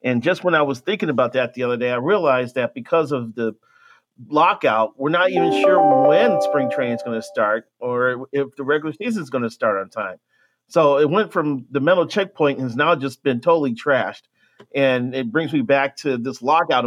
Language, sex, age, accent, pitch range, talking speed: English, male, 40-59, American, 120-150 Hz, 220 wpm